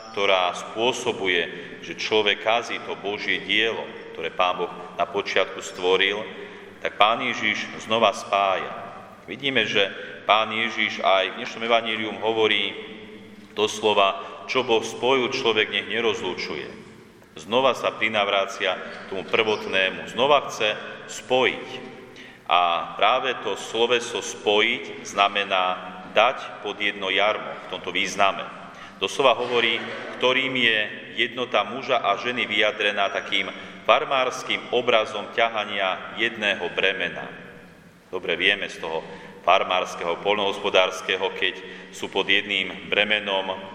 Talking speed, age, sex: 110 wpm, 40-59, male